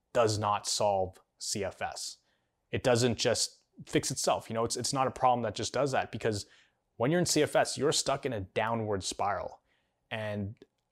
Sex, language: male, English